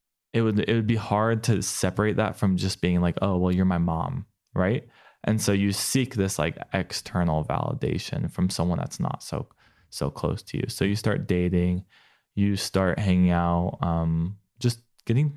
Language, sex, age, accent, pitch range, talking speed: English, male, 20-39, American, 90-115 Hz, 185 wpm